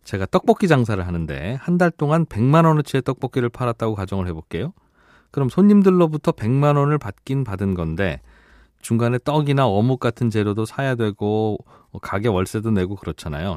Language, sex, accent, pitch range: Korean, male, native, 100-140 Hz